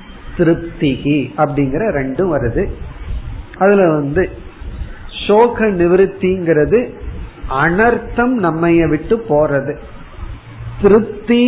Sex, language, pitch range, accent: male, Tamil, 135-190 Hz, native